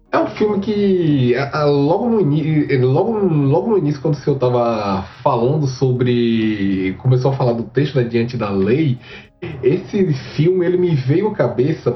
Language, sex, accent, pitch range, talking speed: Portuguese, male, Brazilian, 125-175 Hz, 170 wpm